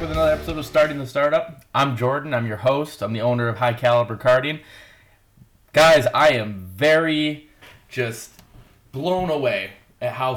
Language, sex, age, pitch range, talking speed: English, male, 30-49, 100-130 Hz, 160 wpm